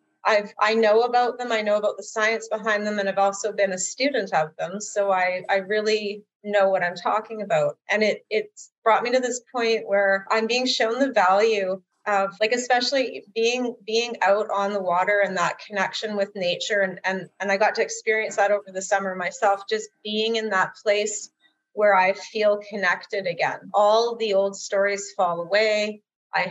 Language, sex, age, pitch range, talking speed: English, female, 30-49, 195-225 Hz, 195 wpm